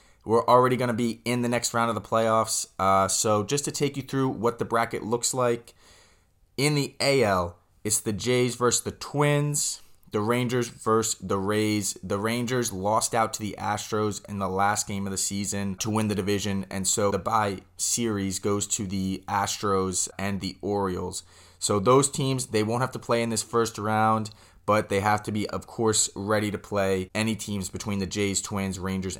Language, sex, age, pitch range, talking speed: English, male, 20-39, 95-115 Hz, 200 wpm